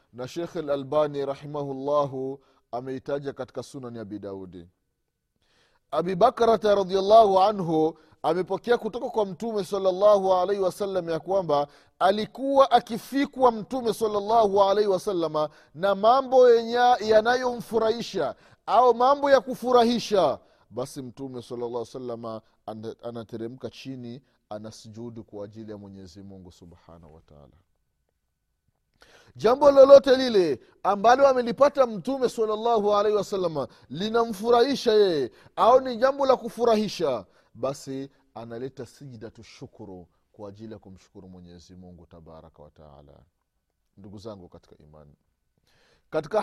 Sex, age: male, 30-49